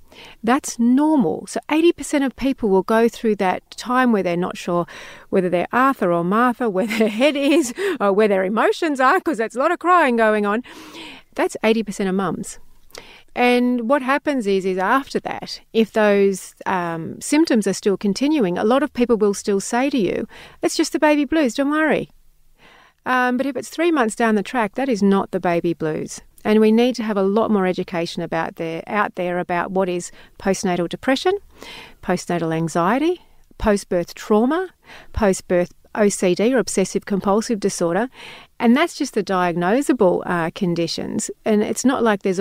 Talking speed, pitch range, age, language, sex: 180 wpm, 180-245 Hz, 40-59, English, female